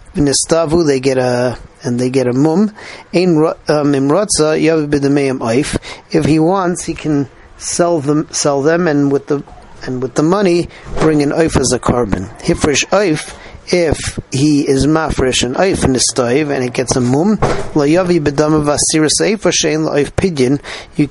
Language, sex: English, male